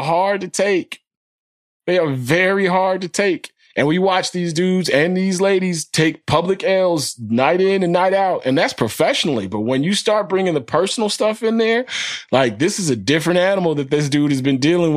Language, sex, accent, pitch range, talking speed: English, male, American, 140-180 Hz, 200 wpm